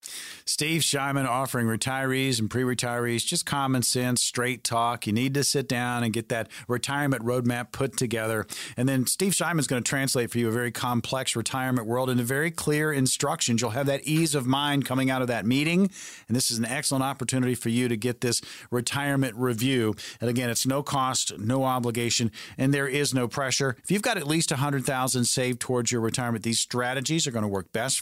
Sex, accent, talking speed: male, American, 205 wpm